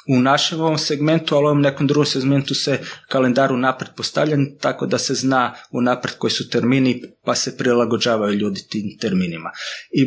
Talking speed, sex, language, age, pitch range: 180 wpm, male, Croatian, 30-49, 115-145 Hz